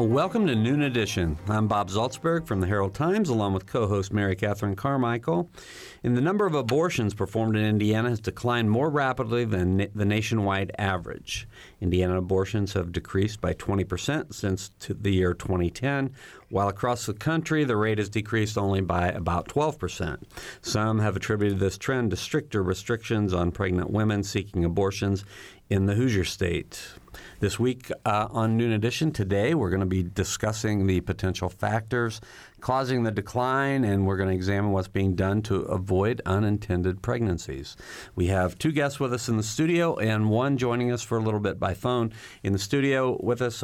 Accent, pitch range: American, 95-120 Hz